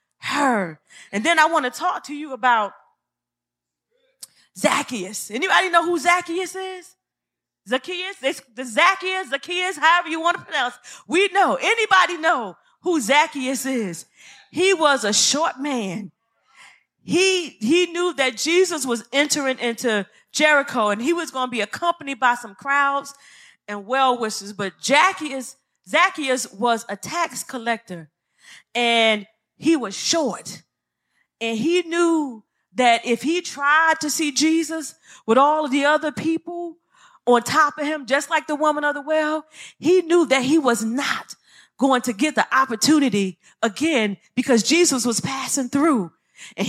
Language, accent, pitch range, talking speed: English, American, 235-330 Hz, 150 wpm